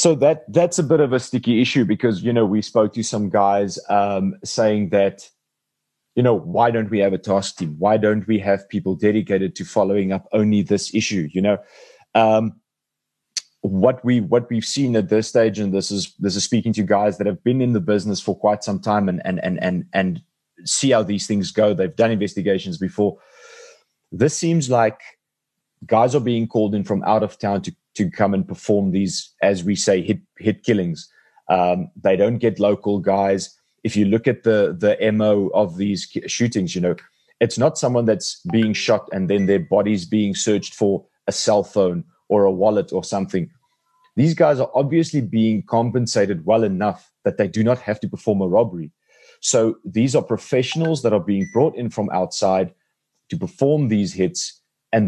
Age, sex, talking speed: 30-49, male, 195 wpm